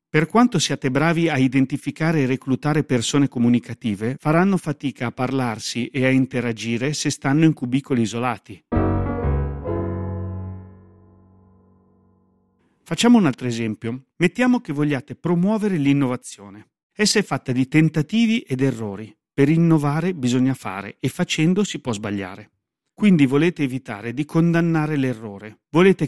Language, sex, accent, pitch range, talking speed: Italian, male, native, 115-150 Hz, 125 wpm